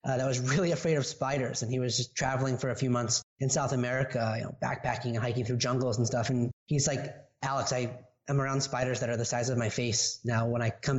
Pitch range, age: 125-155 Hz, 30-49